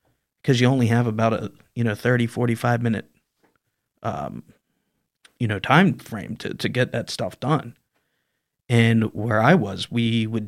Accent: American